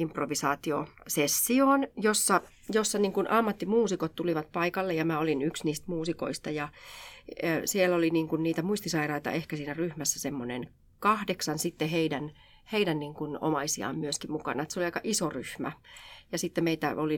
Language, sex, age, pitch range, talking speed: Finnish, female, 30-49, 150-185 Hz, 145 wpm